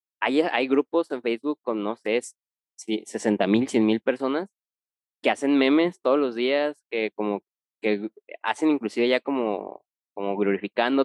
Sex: male